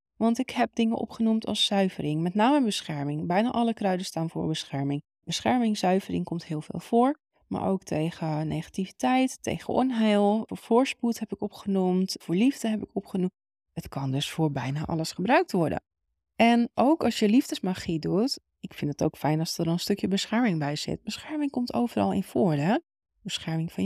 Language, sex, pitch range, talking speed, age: Dutch, female, 165-225 Hz, 180 wpm, 20-39